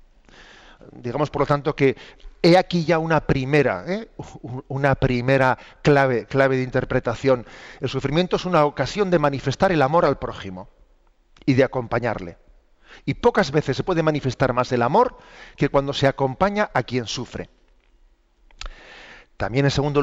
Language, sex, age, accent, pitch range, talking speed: Spanish, male, 40-59, Spanish, 125-145 Hz, 150 wpm